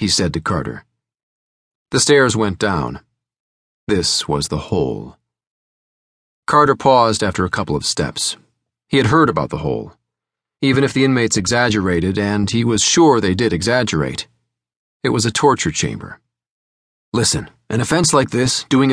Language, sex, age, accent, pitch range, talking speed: English, male, 40-59, American, 80-135 Hz, 150 wpm